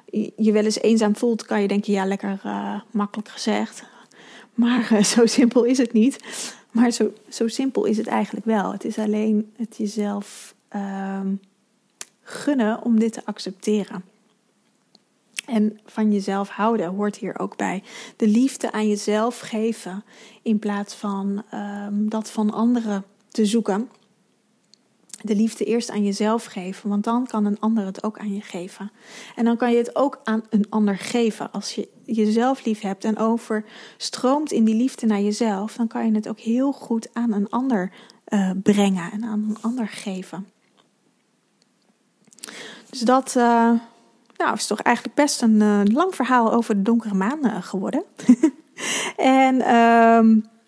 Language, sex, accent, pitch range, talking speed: Dutch, female, Dutch, 205-235 Hz, 155 wpm